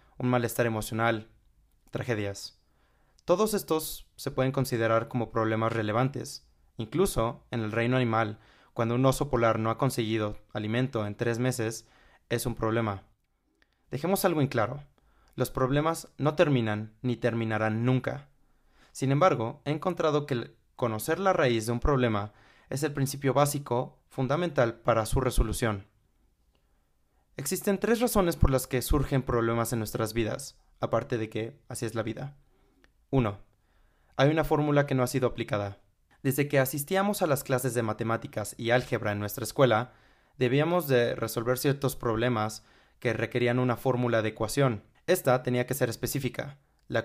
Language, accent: Spanish, Mexican